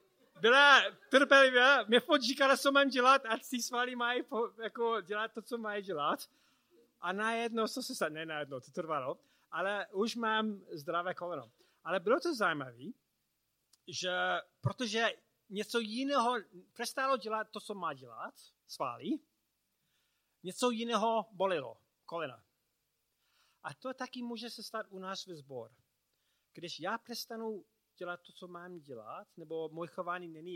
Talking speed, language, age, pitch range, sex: 140 wpm, Czech, 30-49, 150-225 Hz, male